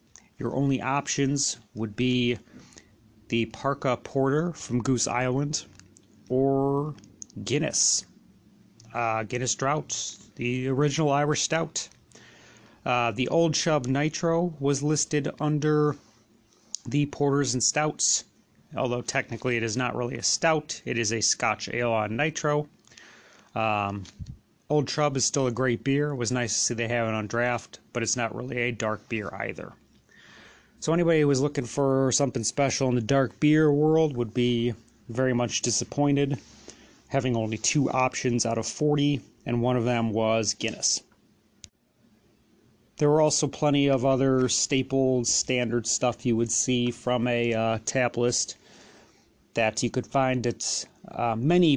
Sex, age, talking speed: male, 30-49, 145 wpm